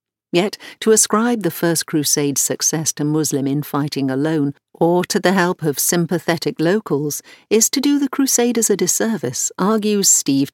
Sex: female